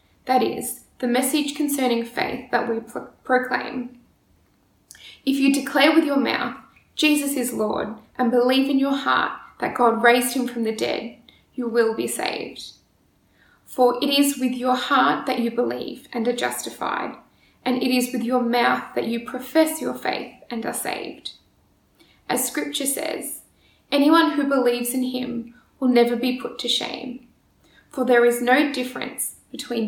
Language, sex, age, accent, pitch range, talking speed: English, female, 10-29, Australian, 235-270 Hz, 160 wpm